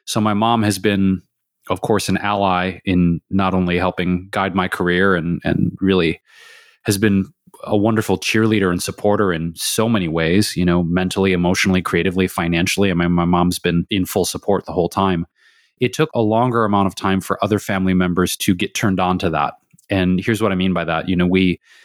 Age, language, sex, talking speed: 20-39, English, male, 205 wpm